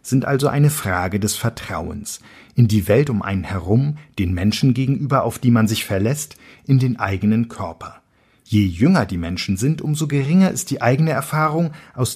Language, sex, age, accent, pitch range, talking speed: German, male, 50-69, German, 105-135 Hz, 180 wpm